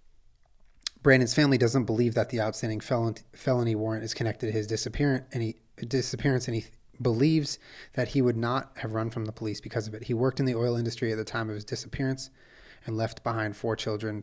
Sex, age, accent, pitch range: male, 30-49, American, 110-130 Hz